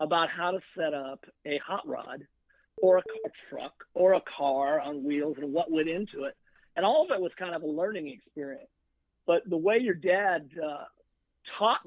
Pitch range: 155-195 Hz